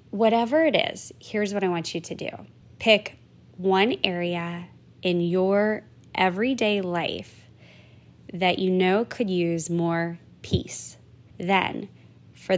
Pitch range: 175-210 Hz